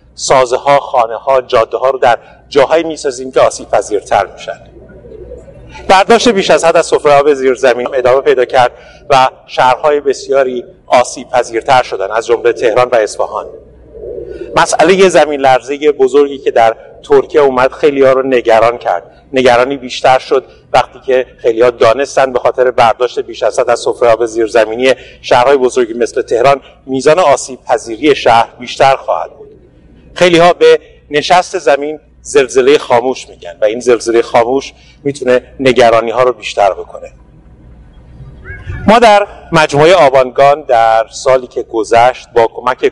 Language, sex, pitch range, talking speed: Persian, male, 125-185 Hz, 145 wpm